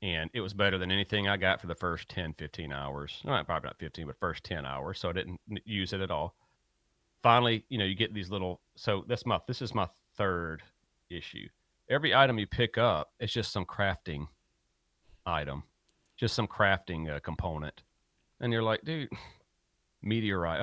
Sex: male